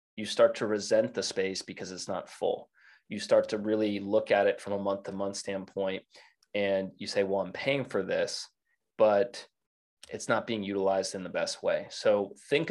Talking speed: 200 wpm